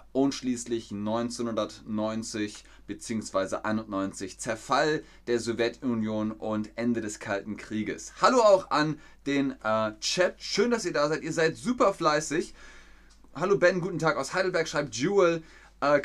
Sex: male